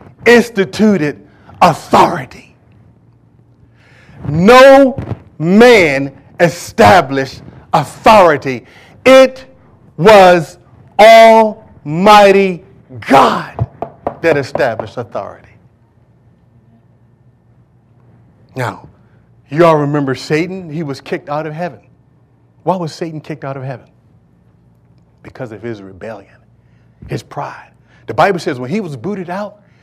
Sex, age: male, 50-69